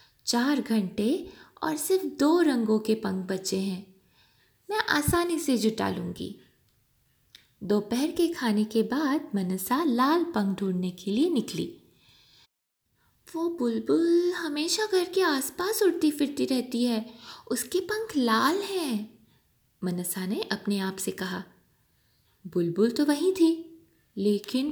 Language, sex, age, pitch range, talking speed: Hindi, female, 20-39, 205-310 Hz, 125 wpm